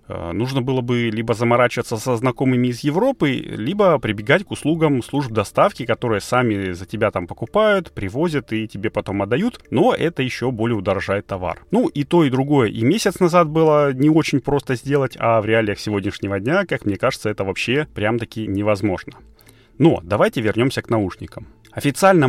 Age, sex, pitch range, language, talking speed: 30-49, male, 105-145 Hz, Russian, 170 wpm